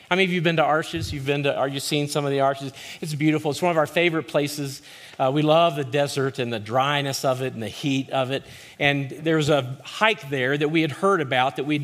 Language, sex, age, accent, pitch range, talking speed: English, male, 40-59, American, 130-150 Hz, 270 wpm